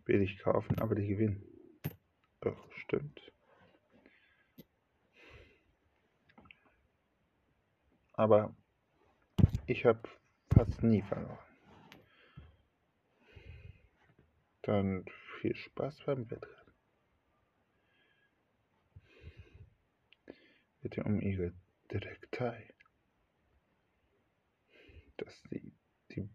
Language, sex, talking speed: German, male, 60 wpm